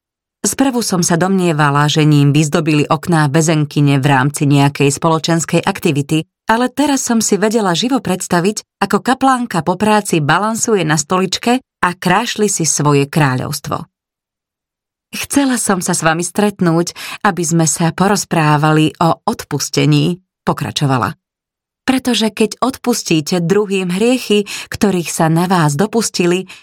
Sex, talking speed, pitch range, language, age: female, 125 wpm, 155-215 Hz, Slovak, 30-49